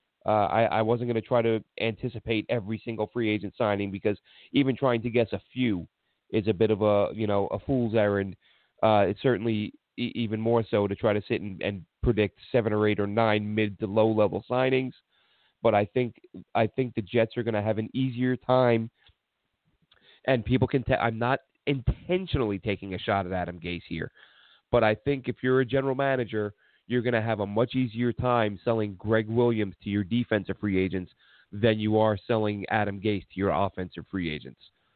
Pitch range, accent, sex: 100-120 Hz, American, male